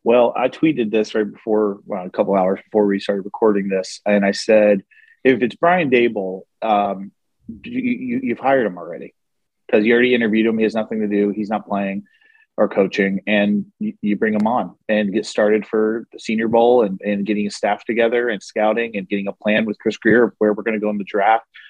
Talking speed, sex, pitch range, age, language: 210 wpm, male, 105-125 Hz, 30-49, English